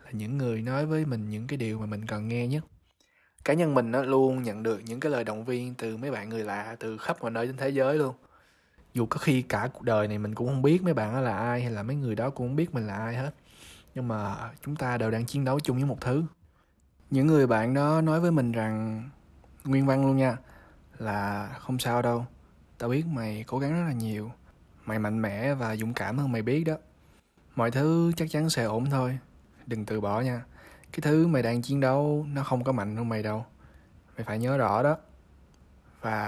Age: 20-39